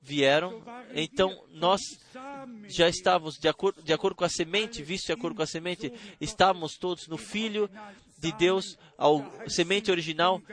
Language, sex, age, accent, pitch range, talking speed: Portuguese, male, 20-39, Brazilian, 155-200 Hz, 155 wpm